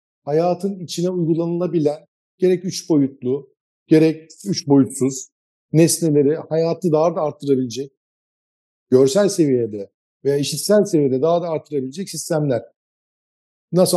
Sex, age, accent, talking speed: male, 50-69, native, 105 wpm